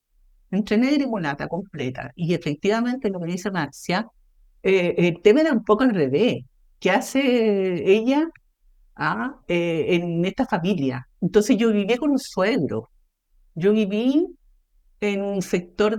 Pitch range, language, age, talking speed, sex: 170-225 Hz, English, 50-69, 140 wpm, female